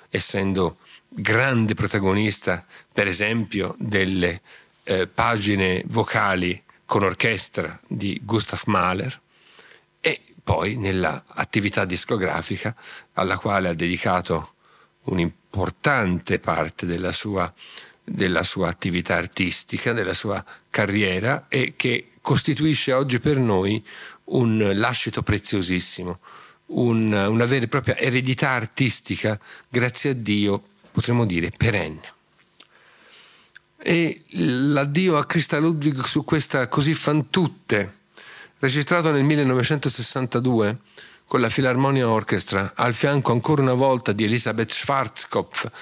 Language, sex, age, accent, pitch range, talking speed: Italian, male, 50-69, native, 100-130 Hz, 105 wpm